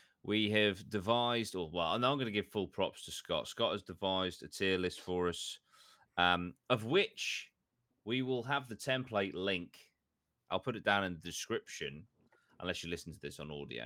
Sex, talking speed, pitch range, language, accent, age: male, 195 wpm, 85-110 Hz, English, British, 20-39